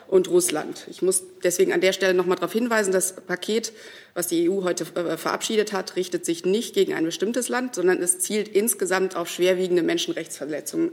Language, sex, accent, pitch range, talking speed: German, female, German, 175-205 Hz, 185 wpm